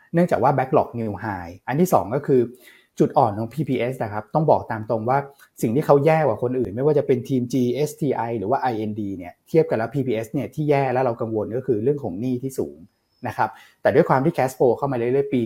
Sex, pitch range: male, 110-140 Hz